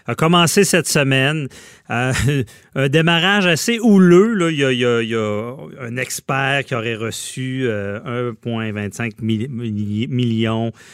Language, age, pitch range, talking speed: French, 30-49, 110-140 Hz, 160 wpm